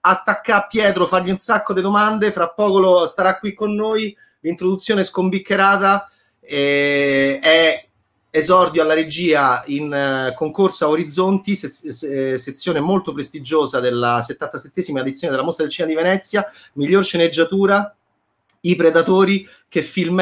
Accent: native